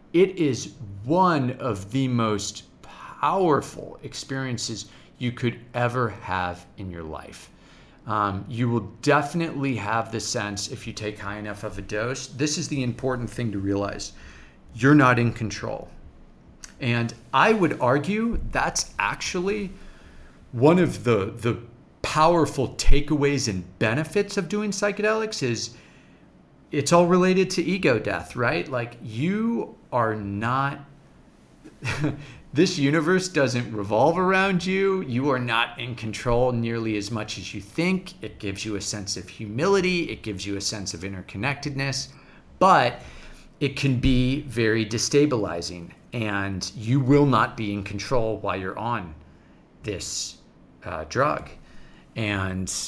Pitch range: 100-145 Hz